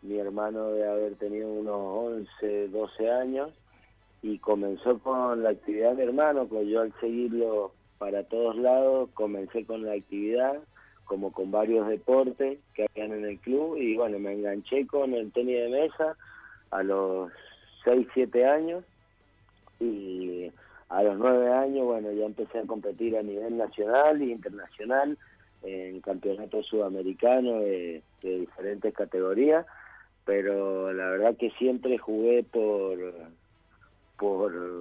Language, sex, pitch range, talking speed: Spanish, male, 100-120 Hz, 140 wpm